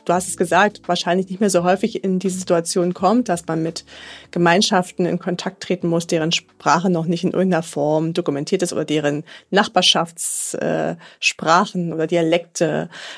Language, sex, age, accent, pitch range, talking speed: English, female, 30-49, German, 175-220 Hz, 160 wpm